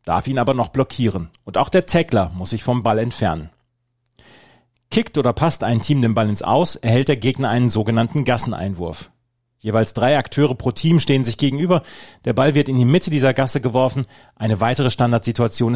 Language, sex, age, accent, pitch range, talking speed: German, male, 30-49, German, 110-135 Hz, 185 wpm